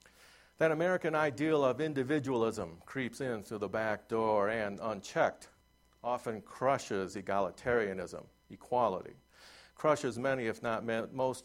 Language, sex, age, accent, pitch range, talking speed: English, male, 50-69, American, 100-135 Hz, 115 wpm